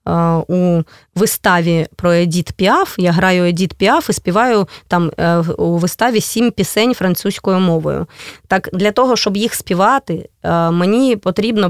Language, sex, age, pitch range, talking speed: Russian, female, 20-39, 180-235 Hz, 135 wpm